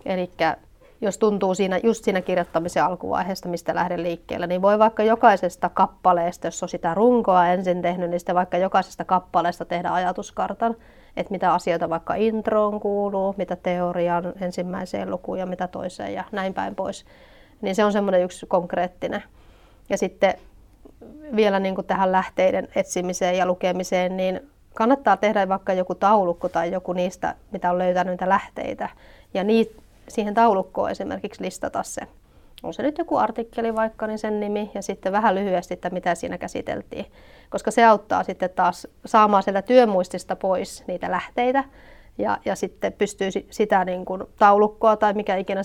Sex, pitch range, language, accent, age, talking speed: female, 180-210 Hz, Finnish, native, 30-49, 160 wpm